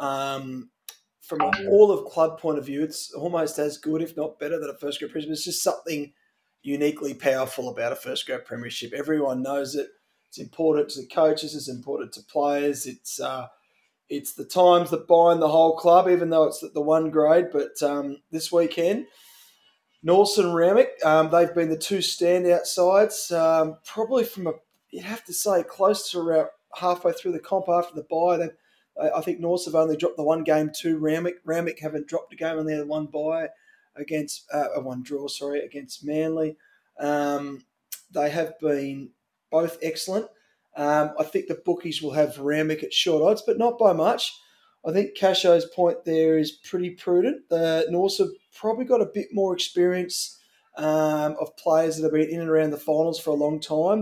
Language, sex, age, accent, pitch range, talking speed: English, male, 20-39, Australian, 150-180 Hz, 190 wpm